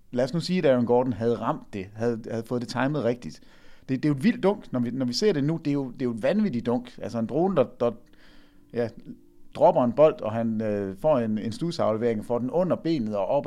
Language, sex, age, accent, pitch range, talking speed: English, male, 30-49, Danish, 115-150 Hz, 270 wpm